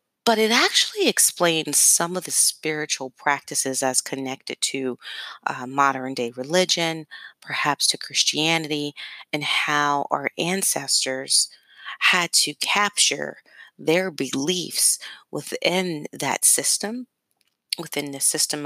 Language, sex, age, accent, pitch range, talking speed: English, female, 30-49, American, 130-165 Hz, 105 wpm